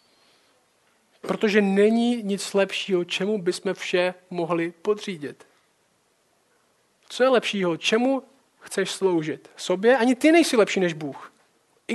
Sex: male